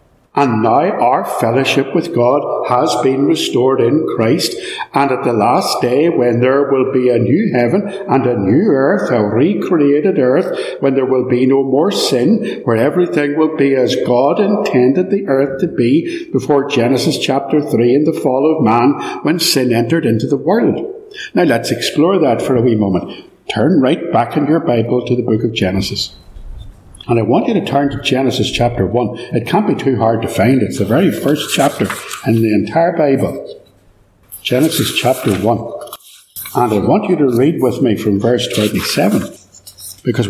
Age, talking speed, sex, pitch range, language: 60-79, 185 wpm, male, 110-140 Hz, English